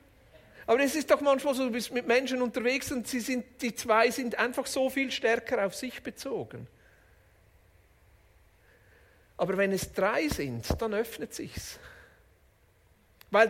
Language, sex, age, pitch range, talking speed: German, male, 50-69, 180-245 Hz, 145 wpm